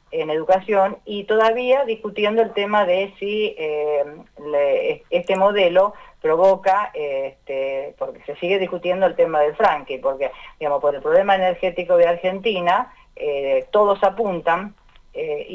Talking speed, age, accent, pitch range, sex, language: 140 wpm, 40-59, Argentinian, 175-295 Hz, female, Spanish